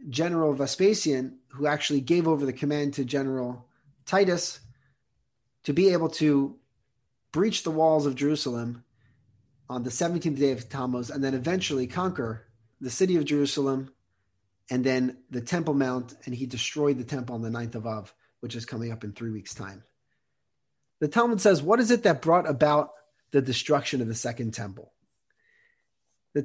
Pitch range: 125-165 Hz